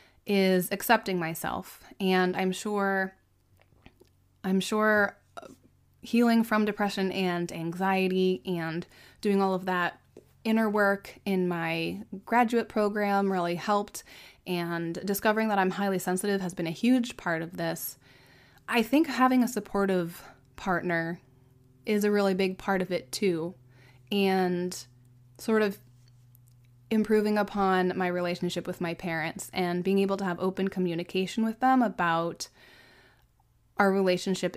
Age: 20-39